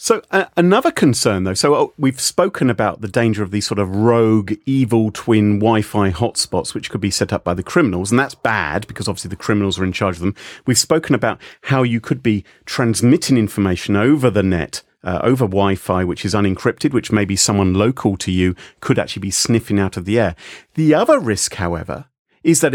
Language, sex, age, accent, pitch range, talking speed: English, male, 40-59, British, 100-135 Hz, 210 wpm